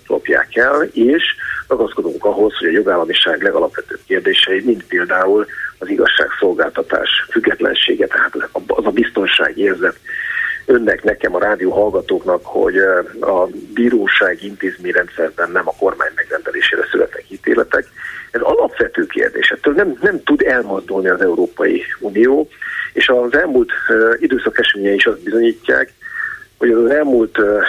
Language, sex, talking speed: Hungarian, male, 120 wpm